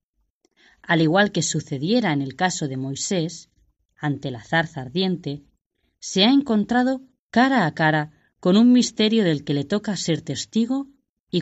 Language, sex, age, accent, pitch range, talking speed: Spanish, female, 20-39, Spanish, 150-205 Hz, 150 wpm